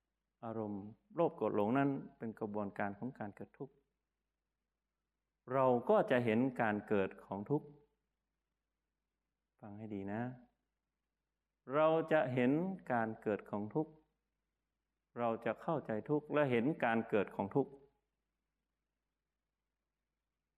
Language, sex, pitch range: Thai, male, 105-145 Hz